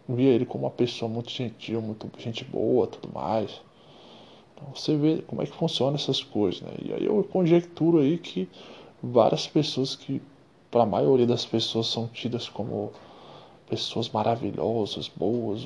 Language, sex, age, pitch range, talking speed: Portuguese, male, 20-39, 110-135 Hz, 155 wpm